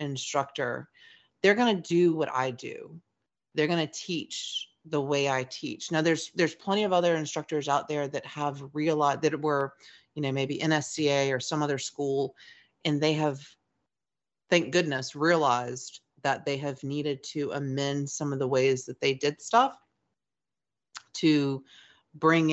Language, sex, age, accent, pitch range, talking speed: English, female, 30-49, American, 135-165 Hz, 160 wpm